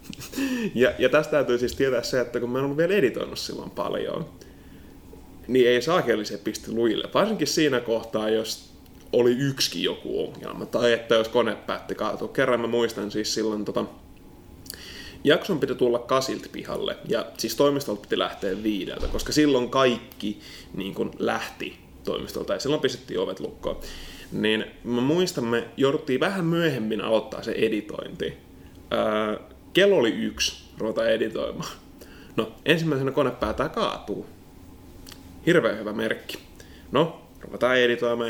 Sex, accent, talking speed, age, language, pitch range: male, native, 135 wpm, 20-39, Finnish, 105-140 Hz